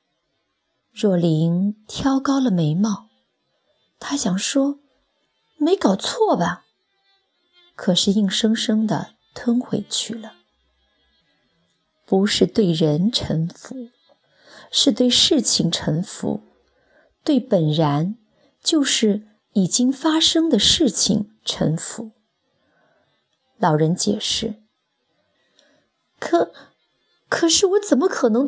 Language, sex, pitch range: Chinese, female, 210-295 Hz